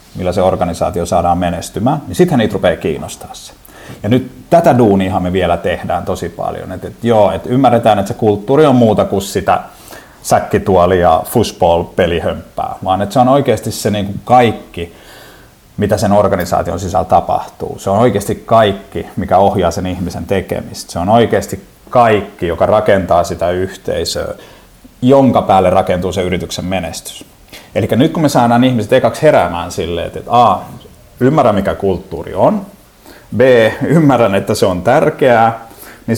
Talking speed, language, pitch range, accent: 155 wpm, Finnish, 95-125 Hz, native